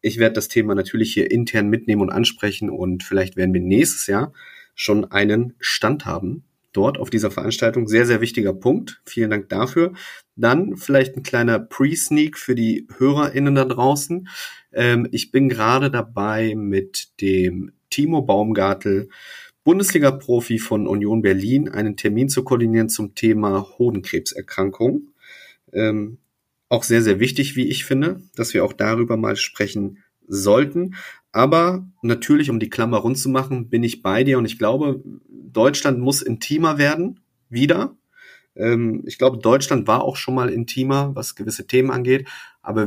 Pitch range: 105-130 Hz